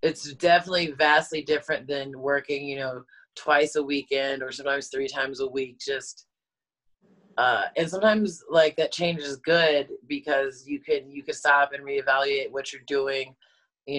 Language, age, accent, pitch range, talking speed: English, 30-49, American, 140-165 Hz, 165 wpm